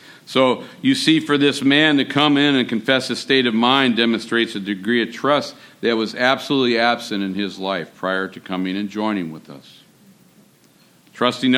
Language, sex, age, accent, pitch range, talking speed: English, male, 50-69, American, 105-125 Hz, 180 wpm